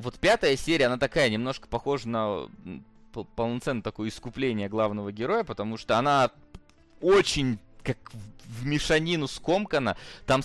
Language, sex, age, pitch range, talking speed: Russian, male, 20-39, 100-130 Hz, 125 wpm